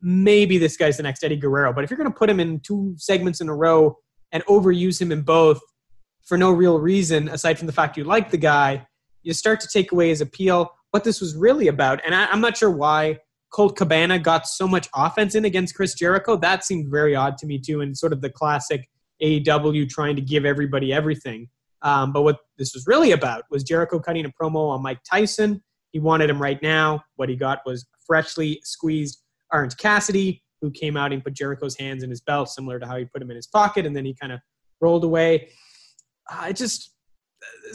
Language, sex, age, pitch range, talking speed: English, male, 20-39, 140-180 Hz, 225 wpm